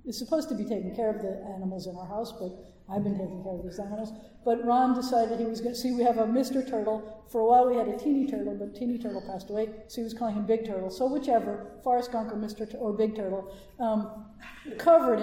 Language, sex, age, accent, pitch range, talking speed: English, female, 50-69, American, 205-235 Hz, 255 wpm